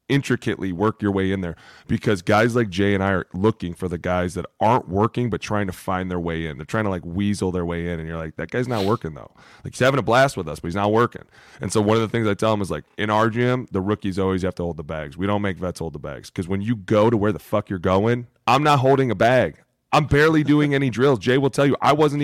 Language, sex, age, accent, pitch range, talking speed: English, male, 20-39, American, 95-120 Hz, 295 wpm